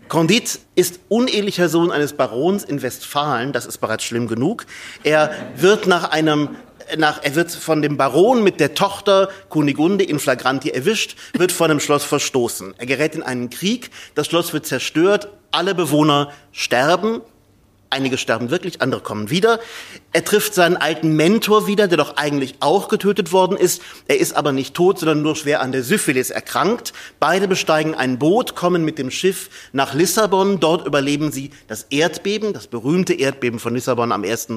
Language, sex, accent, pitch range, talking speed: German, male, German, 135-180 Hz, 175 wpm